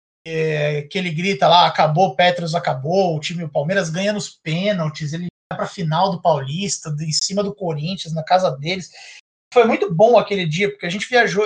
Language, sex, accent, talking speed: Portuguese, male, Brazilian, 200 wpm